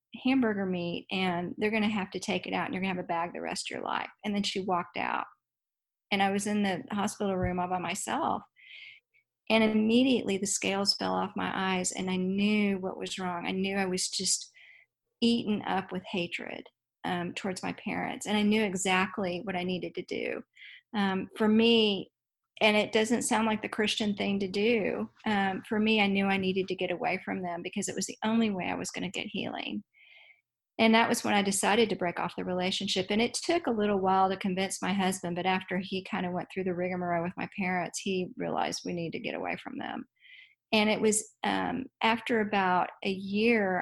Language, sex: English, female